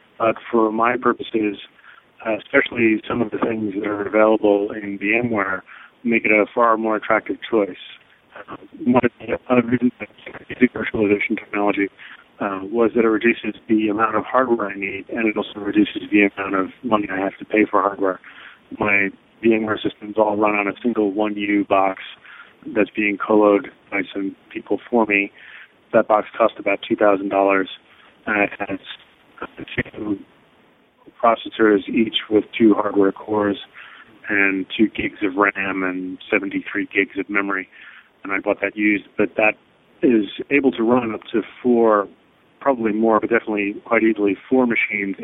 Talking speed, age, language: 160 wpm, 40-59, English